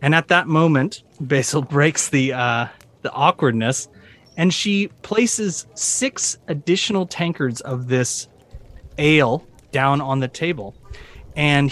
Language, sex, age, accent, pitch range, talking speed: English, male, 30-49, American, 135-195 Hz, 125 wpm